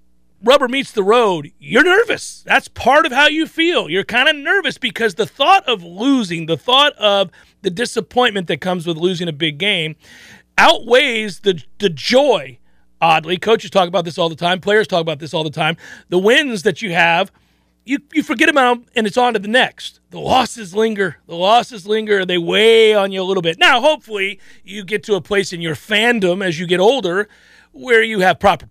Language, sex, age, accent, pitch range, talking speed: English, male, 40-59, American, 180-245 Hz, 210 wpm